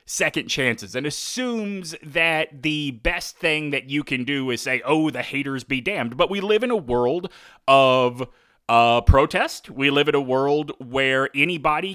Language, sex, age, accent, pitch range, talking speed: English, male, 30-49, American, 135-180 Hz, 175 wpm